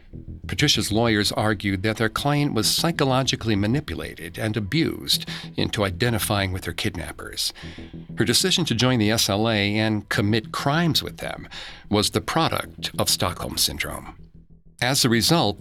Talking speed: 140 wpm